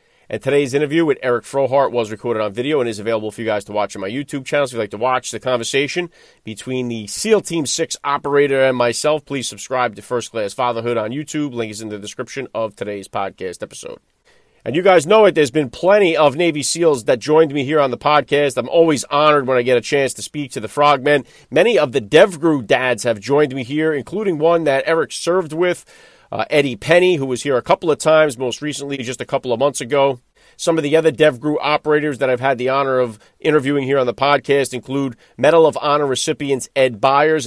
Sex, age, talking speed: male, 30-49, 225 wpm